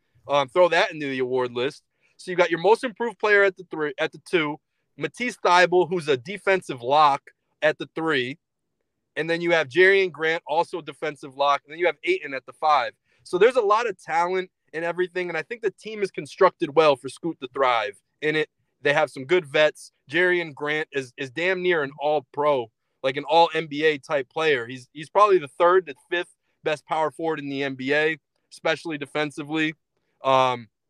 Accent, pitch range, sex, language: American, 155-195 Hz, male, English